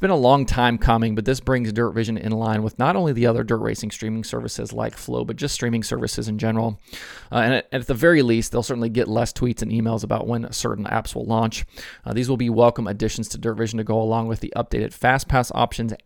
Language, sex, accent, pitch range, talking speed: English, male, American, 110-125 Hz, 245 wpm